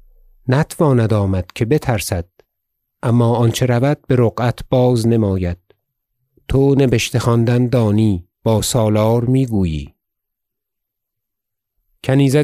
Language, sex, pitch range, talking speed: Persian, male, 110-130 Hz, 85 wpm